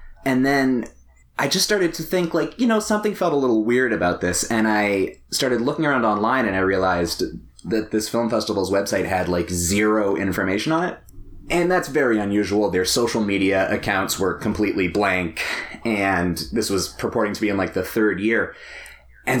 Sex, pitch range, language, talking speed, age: male, 95-125 Hz, English, 185 wpm, 30-49